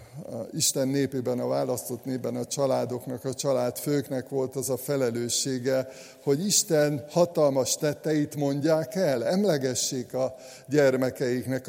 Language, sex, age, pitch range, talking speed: Hungarian, male, 60-79, 125-150 Hz, 125 wpm